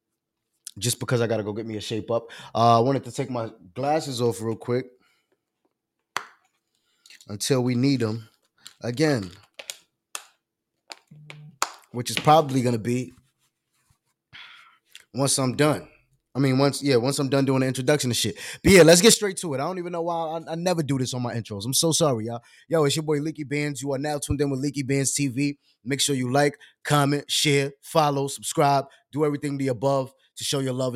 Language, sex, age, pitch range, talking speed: English, male, 20-39, 120-160 Hz, 200 wpm